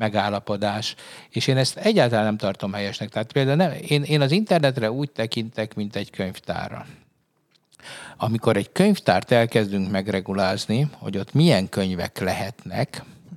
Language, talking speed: Hungarian, 130 wpm